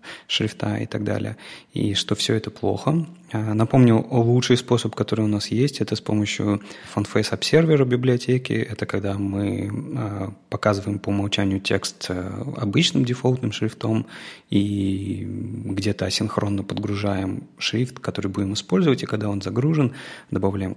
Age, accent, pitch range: 20-39, native, 100-130 Hz